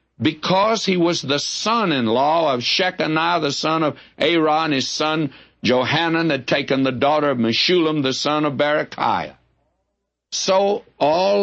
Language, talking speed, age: English, 135 wpm, 60-79